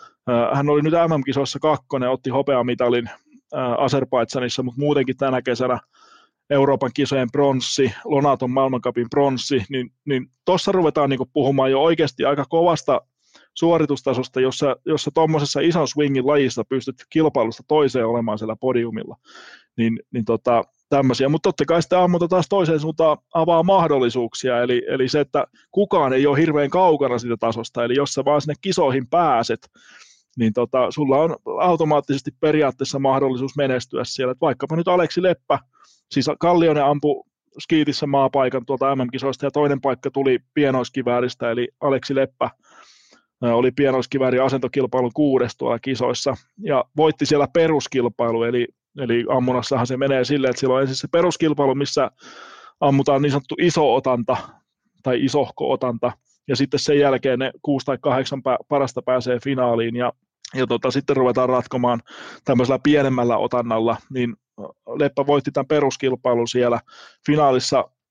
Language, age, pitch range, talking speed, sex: Finnish, 20-39, 125-150 Hz, 135 wpm, male